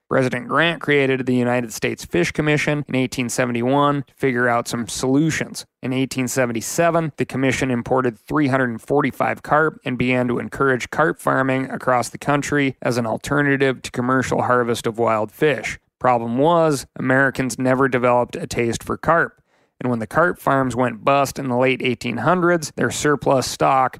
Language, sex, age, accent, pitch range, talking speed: English, male, 30-49, American, 125-145 Hz, 160 wpm